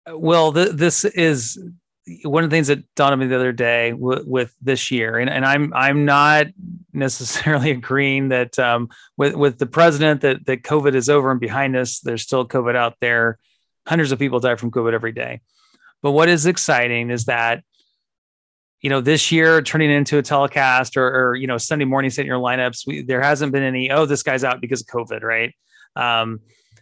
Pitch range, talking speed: 120-155 Hz, 200 wpm